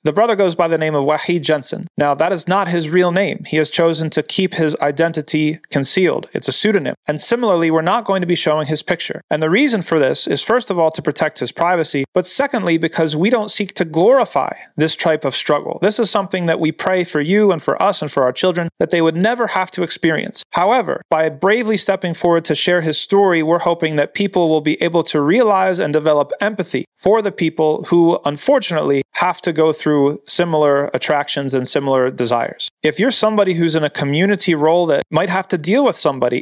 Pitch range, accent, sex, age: 150-185 Hz, American, male, 30-49